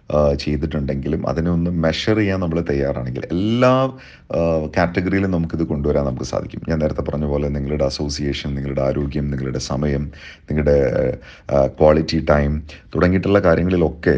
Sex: male